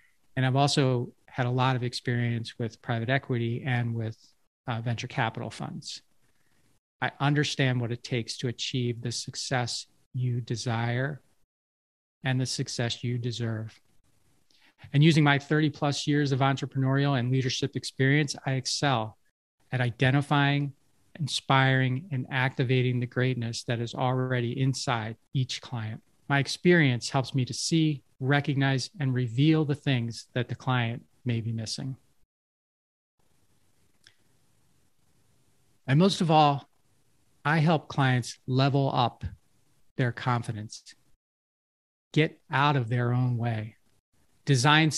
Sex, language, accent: male, English, American